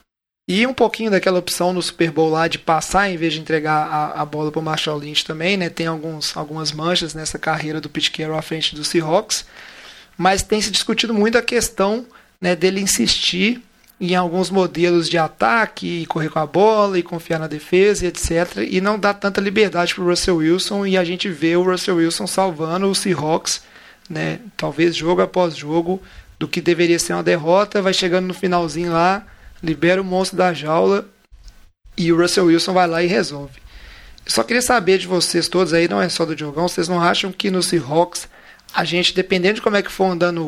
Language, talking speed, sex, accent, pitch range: Portuguese, 205 wpm, male, Brazilian, 165-190 Hz